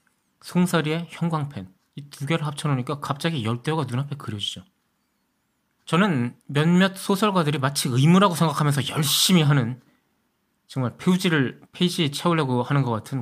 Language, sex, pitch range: Korean, male, 125-165 Hz